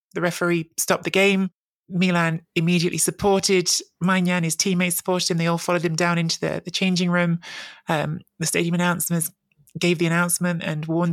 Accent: British